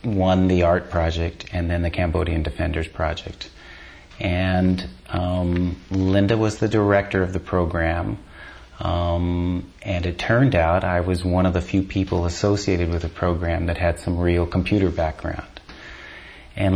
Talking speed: 150 wpm